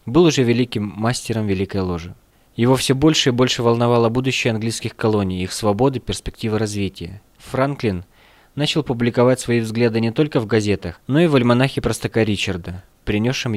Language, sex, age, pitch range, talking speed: Russian, male, 20-39, 105-130 Hz, 155 wpm